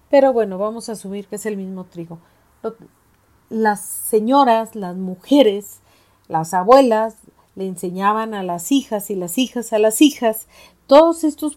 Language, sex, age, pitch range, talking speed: Spanish, female, 40-59, 195-245 Hz, 150 wpm